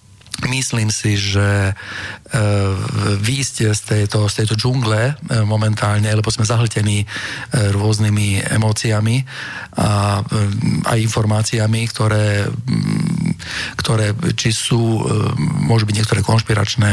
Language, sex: Slovak, male